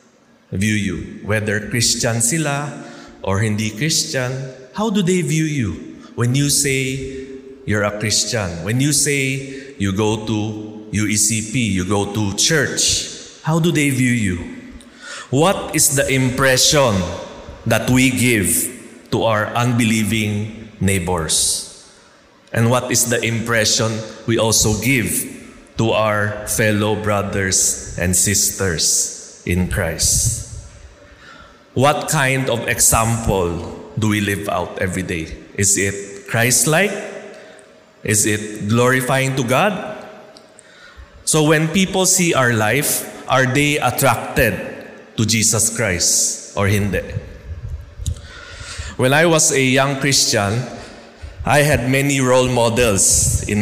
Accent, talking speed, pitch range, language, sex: Filipino, 120 wpm, 105-135 Hz, English, male